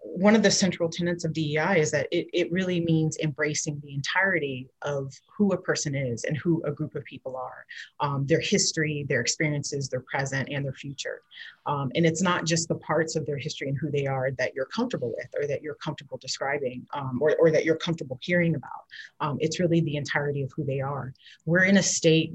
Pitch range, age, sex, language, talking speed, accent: 145-175 Hz, 30-49, female, English, 220 wpm, American